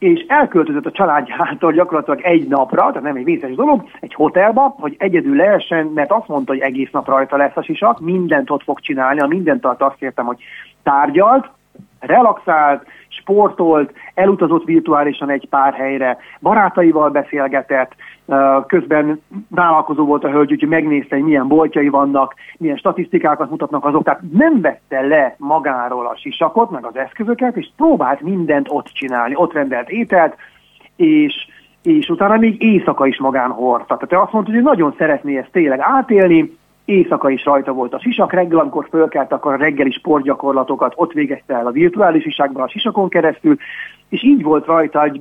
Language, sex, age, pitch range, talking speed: Hungarian, male, 30-49, 140-215 Hz, 165 wpm